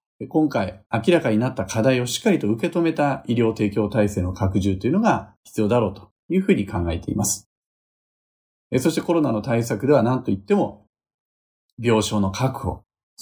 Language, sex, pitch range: Japanese, male, 100-135 Hz